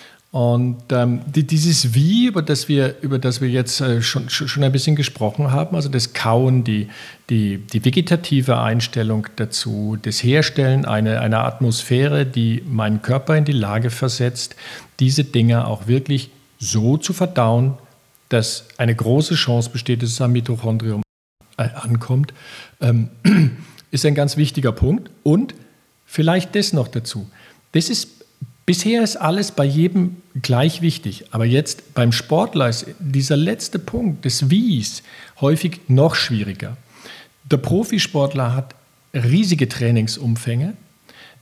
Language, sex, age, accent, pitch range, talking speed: German, male, 50-69, German, 120-150 Hz, 140 wpm